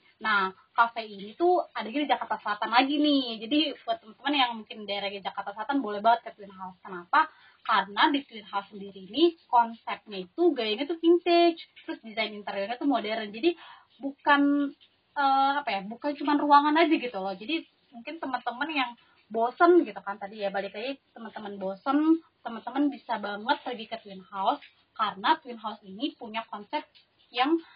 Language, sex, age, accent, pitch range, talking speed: Indonesian, female, 20-39, native, 220-300 Hz, 175 wpm